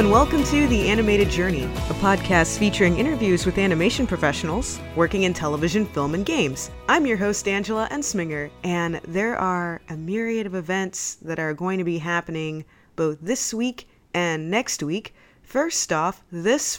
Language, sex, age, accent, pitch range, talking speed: English, female, 20-39, American, 160-205 Hz, 165 wpm